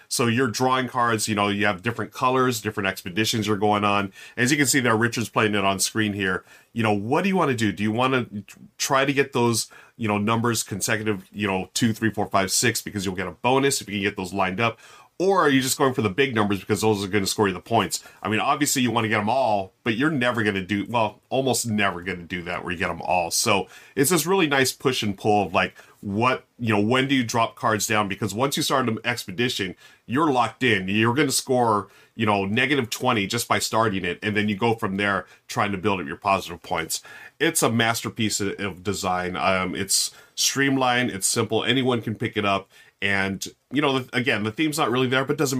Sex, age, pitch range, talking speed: male, 30-49, 100-125 Hz, 250 wpm